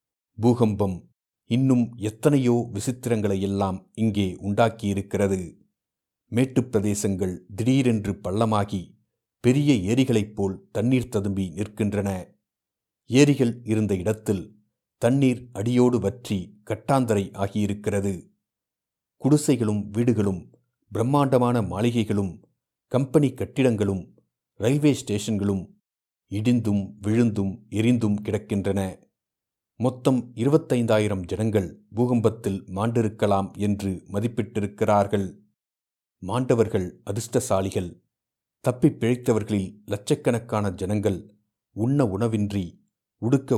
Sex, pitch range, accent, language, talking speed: male, 100-120 Hz, native, Tamil, 70 wpm